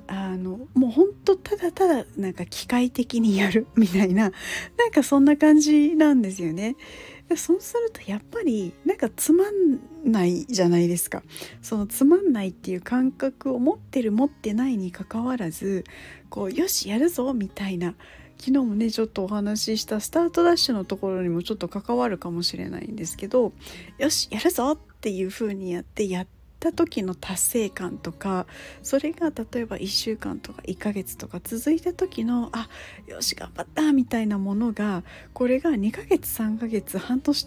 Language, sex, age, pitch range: Japanese, female, 40-59, 190-285 Hz